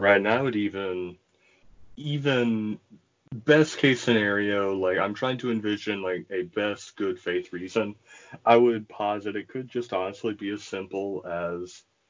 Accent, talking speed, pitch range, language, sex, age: American, 155 wpm, 95-115 Hz, English, male, 30-49